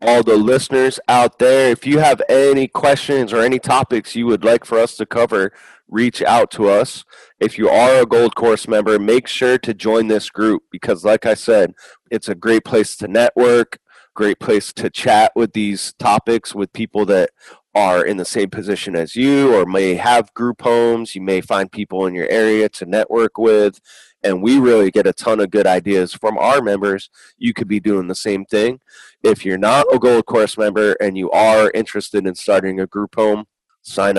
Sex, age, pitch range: male, 30-49, 95-115 Hz